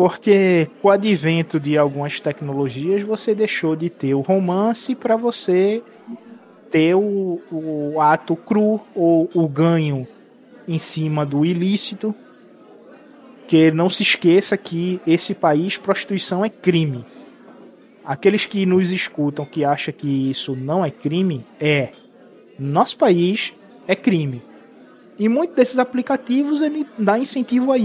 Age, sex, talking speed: 20-39, male, 130 wpm